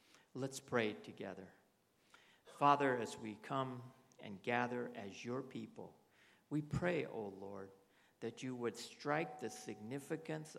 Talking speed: 130 wpm